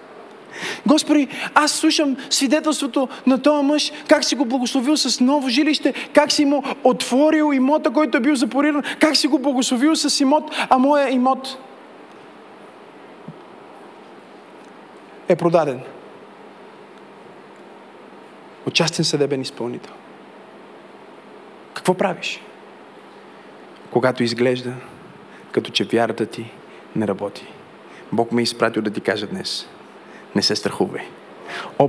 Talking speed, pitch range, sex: 110 wpm, 175-290 Hz, male